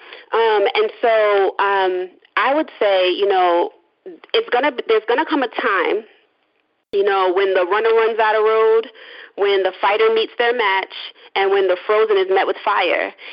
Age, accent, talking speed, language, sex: 30-49, American, 175 wpm, English, female